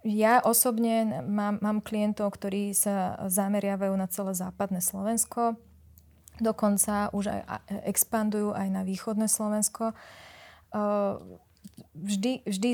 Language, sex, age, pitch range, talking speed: Slovak, female, 20-39, 195-220 Hz, 105 wpm